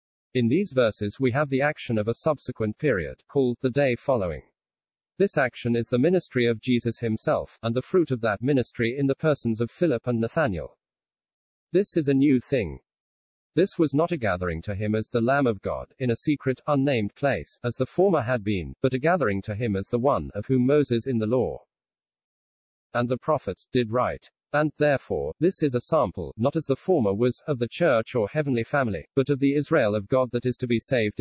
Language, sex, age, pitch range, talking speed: English, male, 50-69, 110-140 Hz, 210 wpm